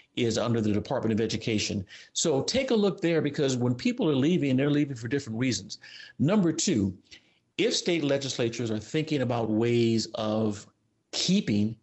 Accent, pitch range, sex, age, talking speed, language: American, 110-140 Hz, male, 50-69, 160 wpm, English